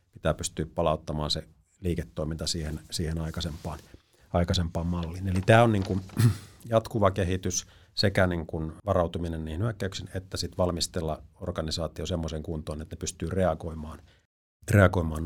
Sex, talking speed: male, 130 wpm